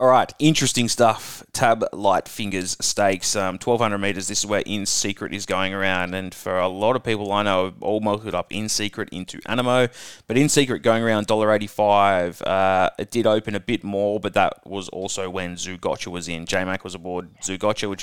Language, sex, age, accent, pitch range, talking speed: English, male, 20-39, Australian, 100-125 Hz, 210 wpm